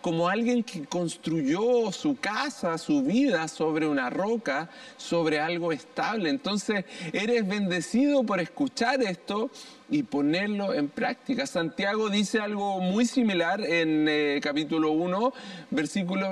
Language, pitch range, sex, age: Spanish, 190-260 Hz, male, 40-59